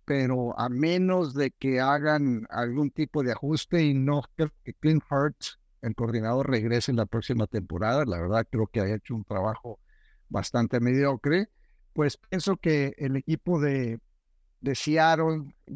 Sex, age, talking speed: male, 60-79, 150 wpm